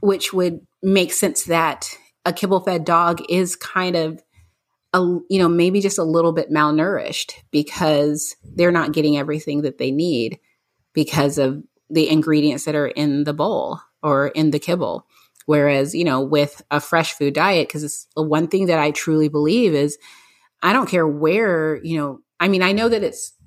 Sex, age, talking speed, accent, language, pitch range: female, 30-49, 180 wpm, American, English, 150-175 Hz